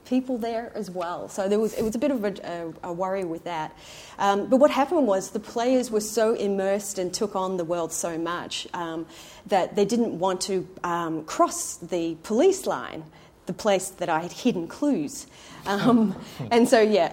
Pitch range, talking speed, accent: 170-240 Hz, 190 wpm, Australian